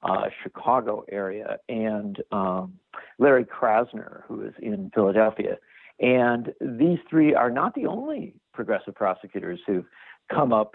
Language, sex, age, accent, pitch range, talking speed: English, male, 60-79, American, 100-125 Hz, 130 wpm